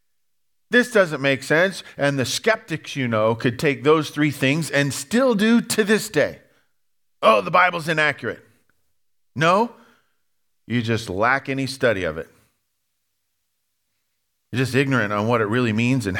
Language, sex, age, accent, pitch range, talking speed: English, male, 40-59, American, 110-155 Hz, 150 wpm